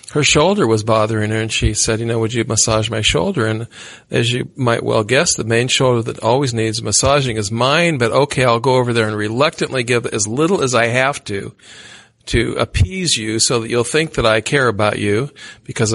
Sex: male